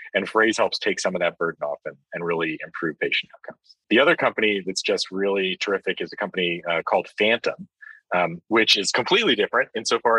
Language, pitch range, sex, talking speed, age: English, 100-130 Hz, male, 200 wpm, 30-49